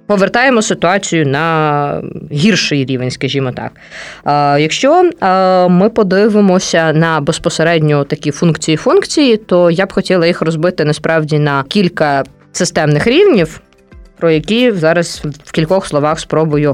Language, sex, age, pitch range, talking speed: Ukrainian, female, 20-39, 150-195 Hz, 115 wpm